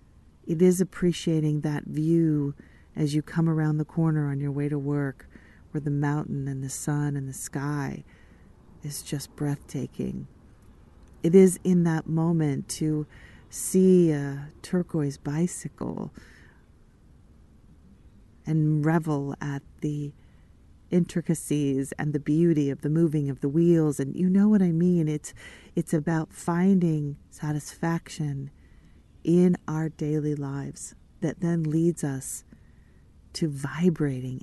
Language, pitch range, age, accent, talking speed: English, 105-165 Hz, 40-59, American, 125 wpm